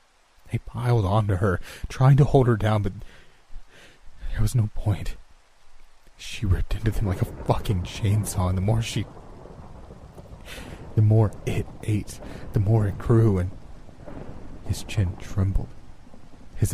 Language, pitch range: English, 90-105 Hz